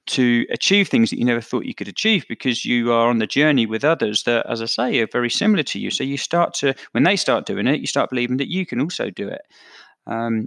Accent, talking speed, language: British, 265 wpm, English